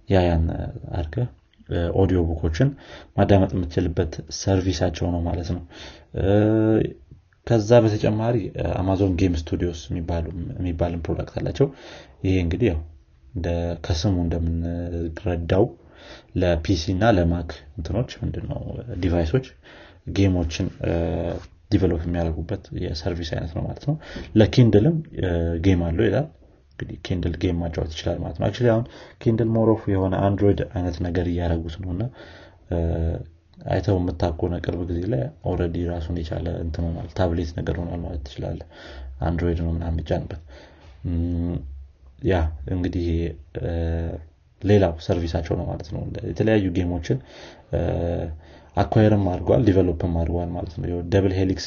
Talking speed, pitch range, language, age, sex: 80 wpm, 85-100 Hz, Amharic, 30-49, male